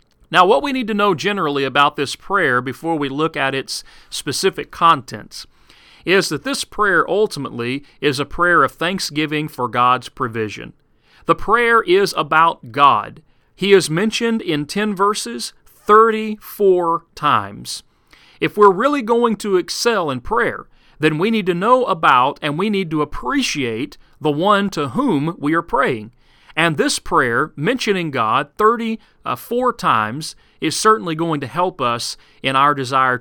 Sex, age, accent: male, 40-59, American